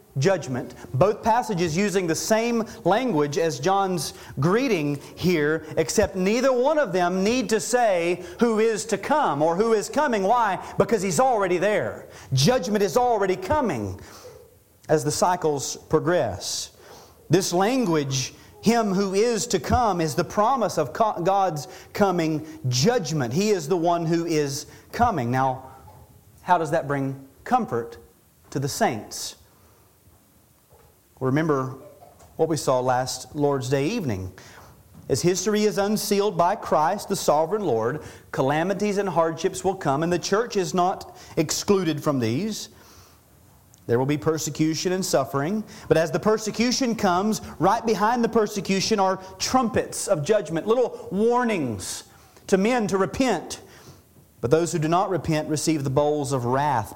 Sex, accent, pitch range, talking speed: male, American, 150-210 Hz, 145 wpm